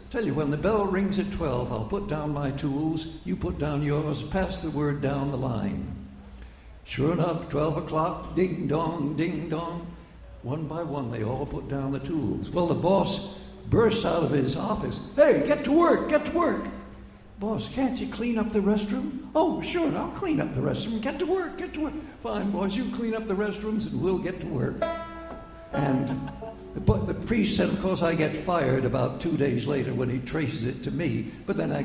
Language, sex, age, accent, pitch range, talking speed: English, male, 60-79, American, 140-200 Hz, 205 wpm